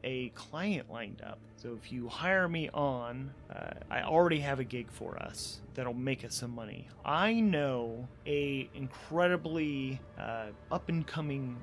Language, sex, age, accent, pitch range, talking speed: English, male, 30-49, American, 125-165 Hz, 150 wpm